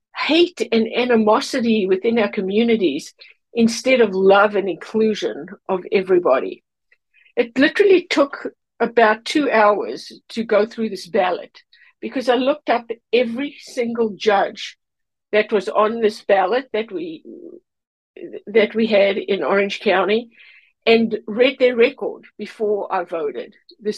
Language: English